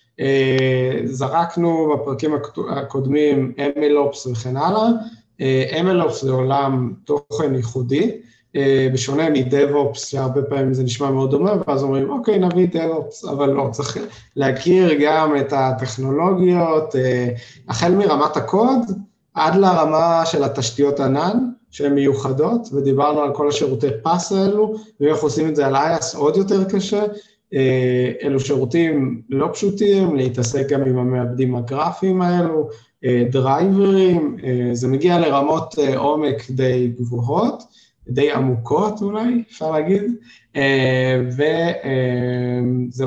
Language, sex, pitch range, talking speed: Hebrew, male, 130-175 Hz, 115 wpm